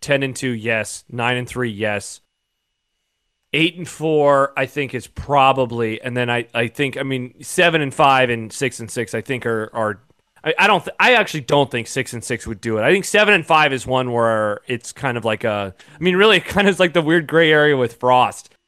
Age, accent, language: 30-49, American, English